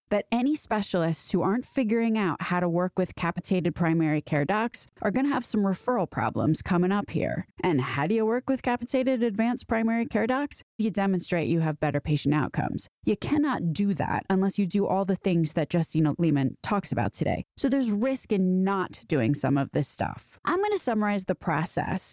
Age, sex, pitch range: 20-39, female, 170-225 Hz